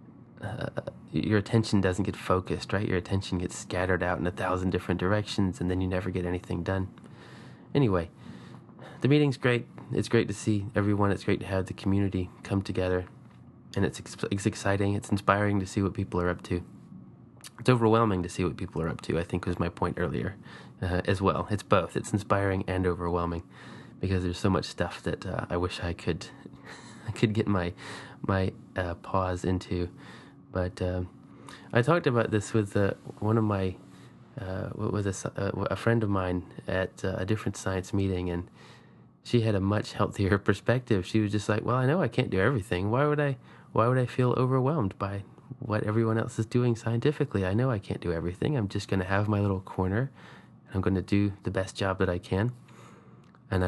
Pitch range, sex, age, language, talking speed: 90-115 Hz, male, 20-39, English, 205 wpm